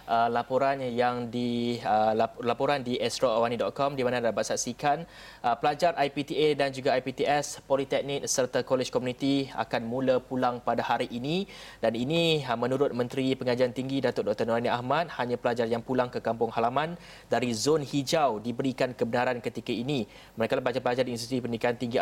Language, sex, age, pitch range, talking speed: Malay, male, 30-49, 125-145 Hz, 155 wpm